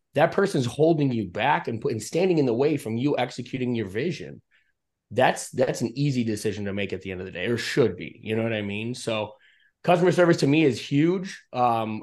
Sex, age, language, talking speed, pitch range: male, 20-39, English, 225 wpm, 115-145 Hz